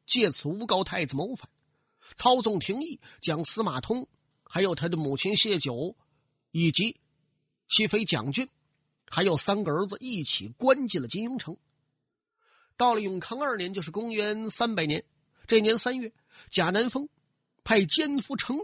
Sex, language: male, Chinese